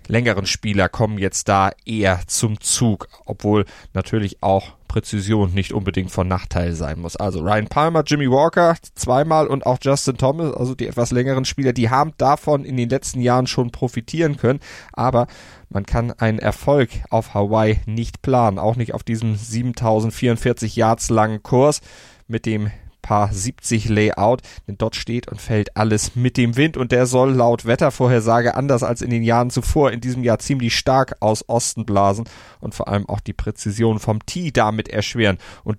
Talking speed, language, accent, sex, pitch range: 175 wpm, German, German, male, 105-125 Hz